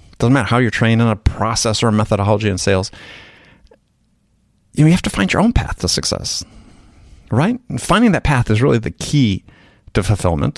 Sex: male